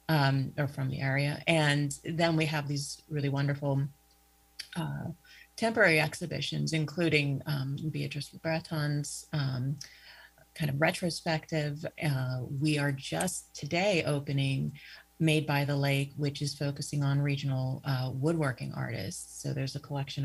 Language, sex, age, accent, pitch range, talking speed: English, female, 30-49, American, 135-150 Hz, 135 wpm